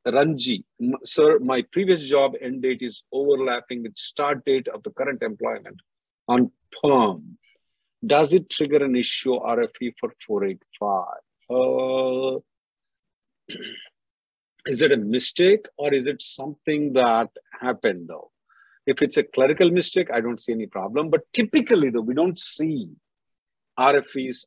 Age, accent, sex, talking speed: 50-69, Indian, male, 135 wpm